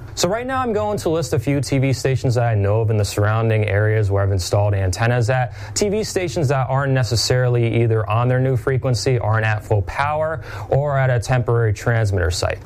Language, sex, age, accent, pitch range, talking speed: English, male, 30-49, American, 105-130 Hz, 210 wpm